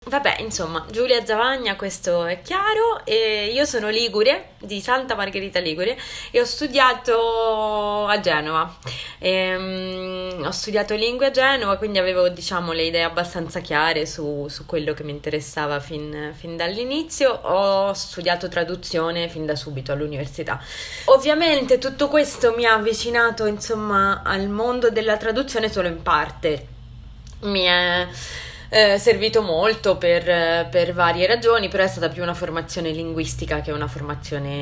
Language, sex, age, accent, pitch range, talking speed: Italian, female, 20-39, native, 155-220 Hz, 140 wpm